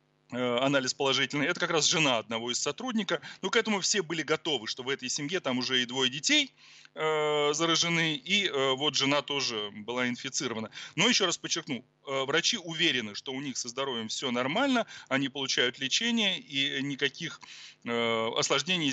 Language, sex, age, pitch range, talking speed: Russian, male, 30-49, 125-155 Hz, 160 wpm